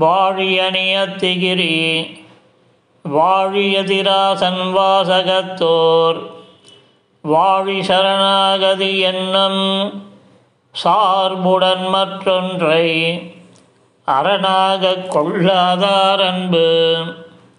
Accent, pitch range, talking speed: native, 185-200 Hz, 40 wpm